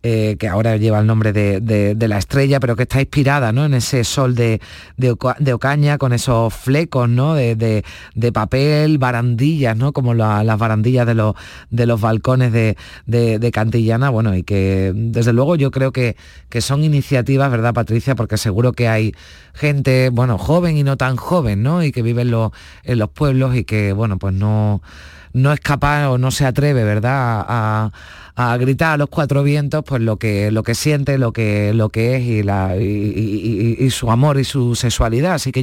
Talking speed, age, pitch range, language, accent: 200 wpm, 30-49, 110-135 Hz, Spanish, Spanish